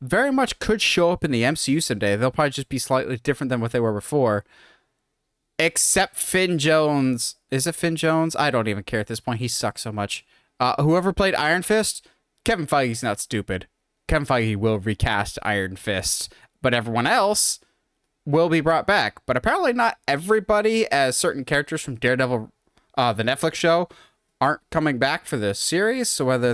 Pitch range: 125-165 Hz